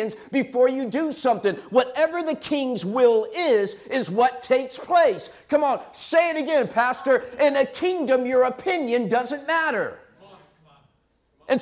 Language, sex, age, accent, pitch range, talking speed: English, male, 50-69, American, 225-280 Hz, 140 wpm